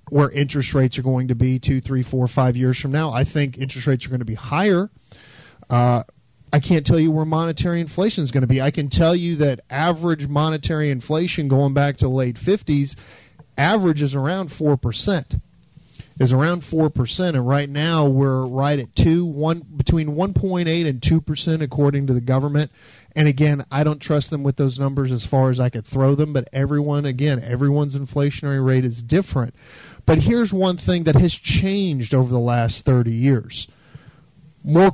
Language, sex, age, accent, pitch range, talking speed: English, male, 40-59, American, 130-155 Hz, 205 wpm